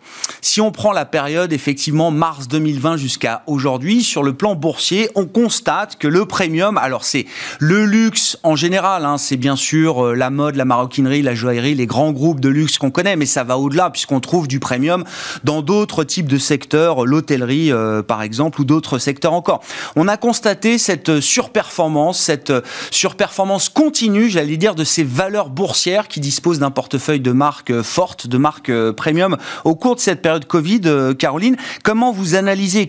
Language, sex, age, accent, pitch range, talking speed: French, male, 30-49, French, 140-195 Hz, 175 wpm